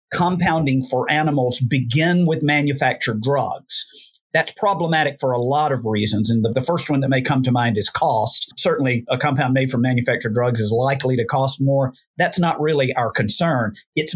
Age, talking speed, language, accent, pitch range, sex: 50-69, 185 wpm, English, American, 125-160 Hz, male